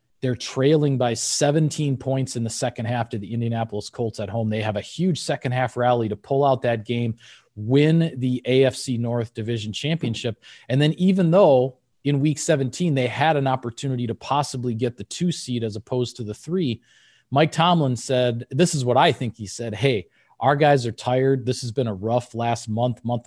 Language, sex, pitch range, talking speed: English, male, 115-135 Hz, 200 wpm